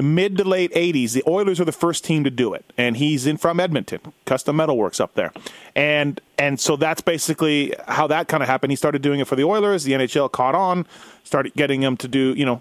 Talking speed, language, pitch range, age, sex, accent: 245 wpm, English, 140-180 Hz, 30-49, male, American